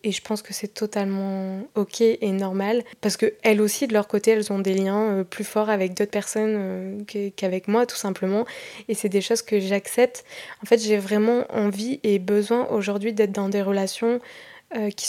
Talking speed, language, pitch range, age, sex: 185 wpm, French, 200-225 Hz, 20-39, female